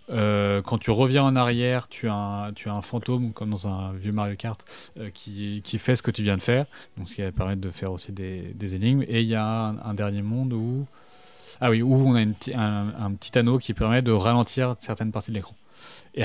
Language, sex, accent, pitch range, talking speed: French, male, French, 105-125 Hz, 250 wpm